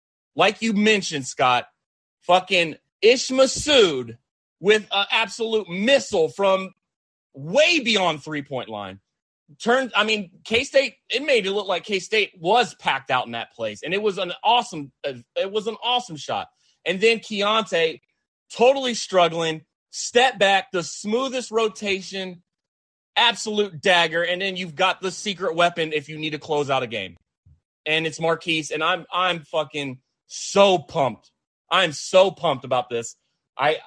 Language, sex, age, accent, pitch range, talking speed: English, male, 30-49, American, 155-210 Hz, 155 wpm